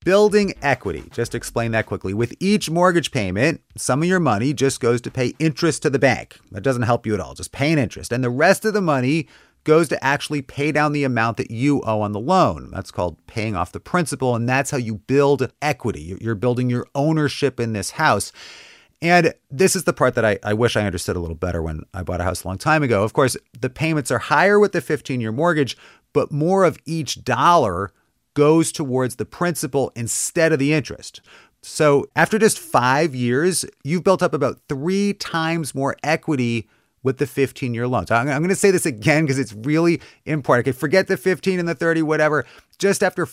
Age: 40-59